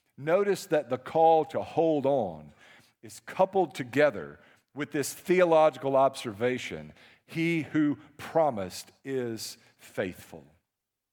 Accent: American